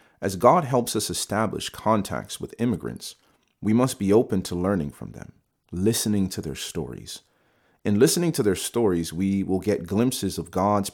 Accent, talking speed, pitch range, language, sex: American, 170 wpm, 85-110 Hz, English, male